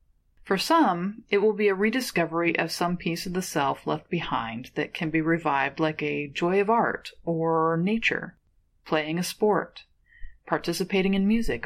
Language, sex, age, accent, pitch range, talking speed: English, female, 30-49, American, 155-210 Hz, 165 wpm